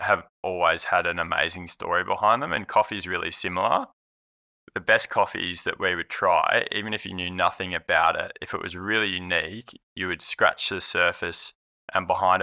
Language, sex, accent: English, male, Australian